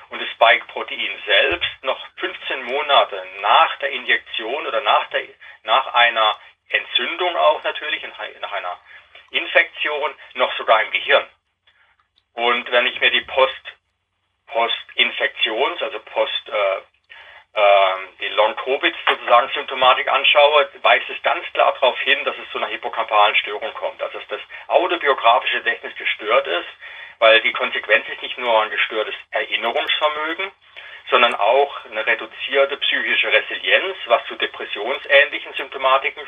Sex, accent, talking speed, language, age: male, German, 125 wpm, German, 40-59